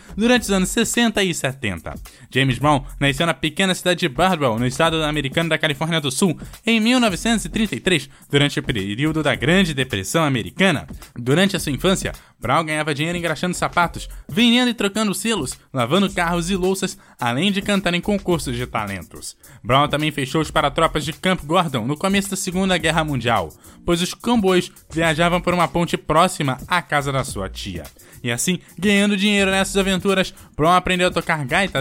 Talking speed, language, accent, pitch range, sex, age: 175 wpm, Portuguese, Brazilian, 145-190 Hz, male, 10-29